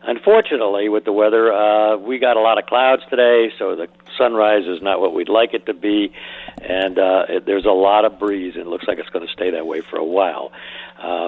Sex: male